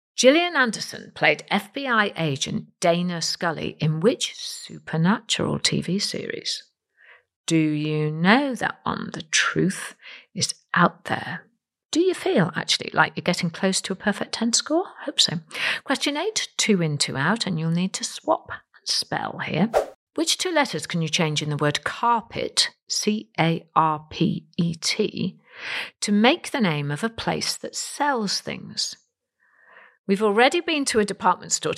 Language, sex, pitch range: English, female, 165-265 Hz